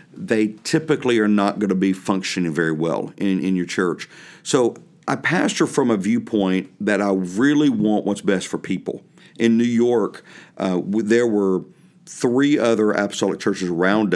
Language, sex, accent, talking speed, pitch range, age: English, male, American, 165 wpm, 95-110 Hz, 50-69